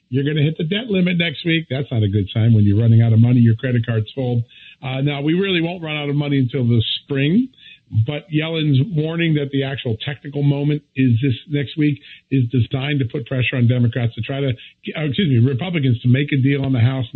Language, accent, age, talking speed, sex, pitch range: English, American, 50-69, 235 wpm, male, 125-160 Hz